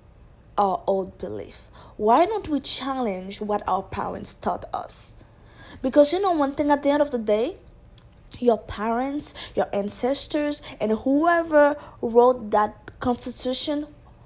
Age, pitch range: 20-39, 200-270 Hz